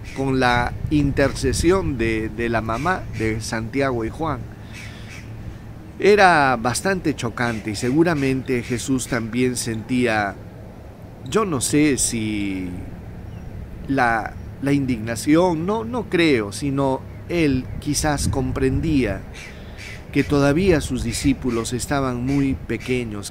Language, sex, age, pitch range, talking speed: Spanish, male, 40-59, 105-140 Hz, 105 wpm